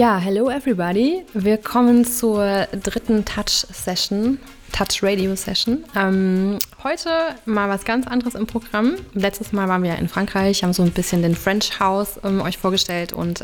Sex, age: female, 20-39